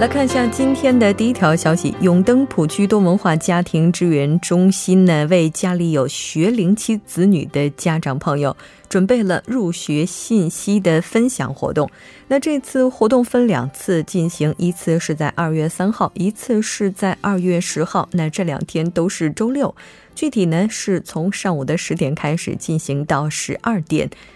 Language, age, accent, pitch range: Korean, 20-39, Chinese, 155-205 Hz